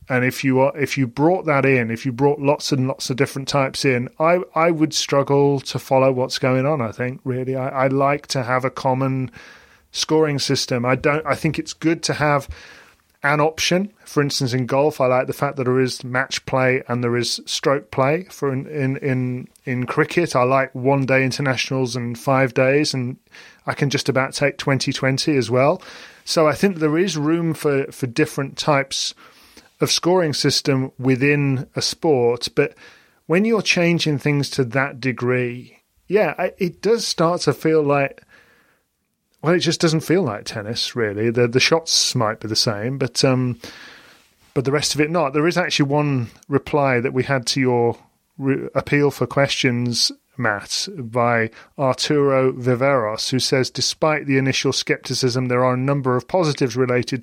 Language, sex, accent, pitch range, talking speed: English, male, British, 130-150 Hz, 185 wpm